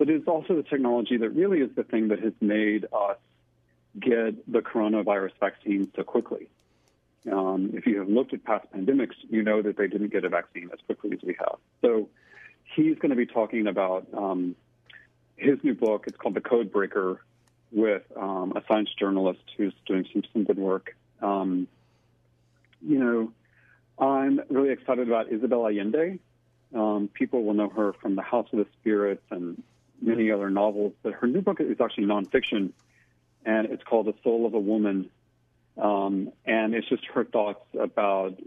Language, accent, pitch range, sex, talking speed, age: English, American, 95-115 Hz, male, 175 wpm, 40-59